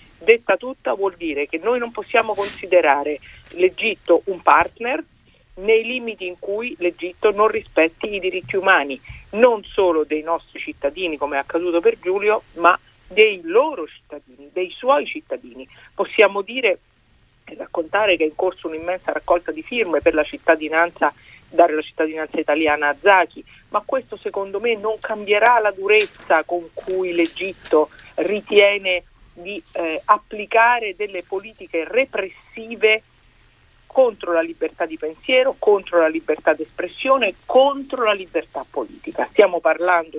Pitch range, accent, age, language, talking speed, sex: 160-225 Hz, native, 50-69, Italian, 140 wpm, female